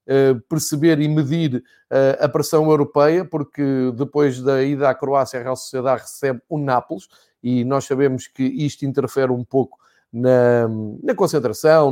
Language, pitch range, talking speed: Portuguese, 130-160 Hz, 145 wpm